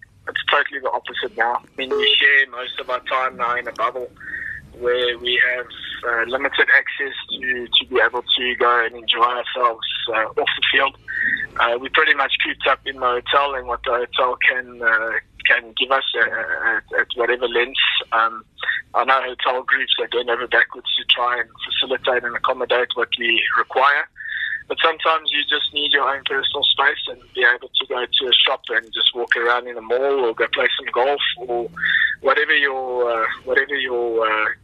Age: 20-39